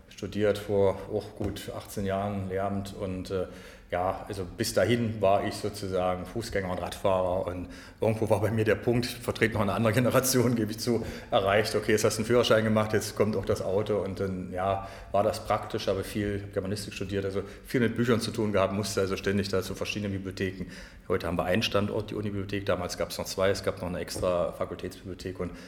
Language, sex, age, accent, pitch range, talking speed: German, male, 40-59, German, 90-110 Hz, 210 wpm